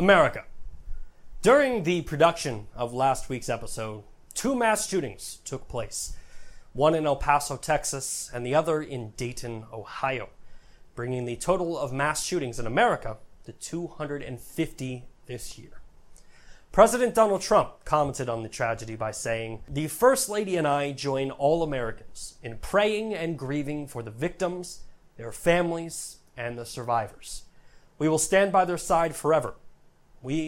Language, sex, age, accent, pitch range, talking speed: English, male, 30-49, American, 120-170 Hz, 145 wpm